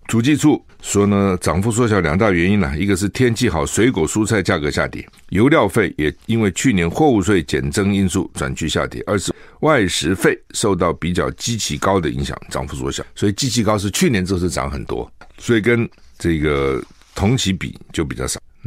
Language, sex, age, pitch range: Chinese, male, 60-79, 80-110 Hz